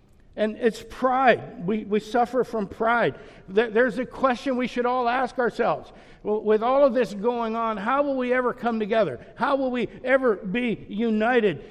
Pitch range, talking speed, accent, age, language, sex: 225-270 Hz, 175 wpm, American, 60-79, English, male